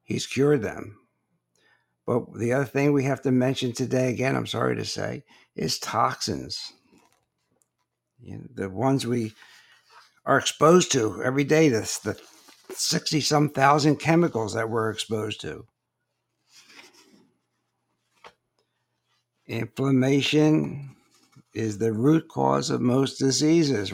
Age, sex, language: 60-79, male, English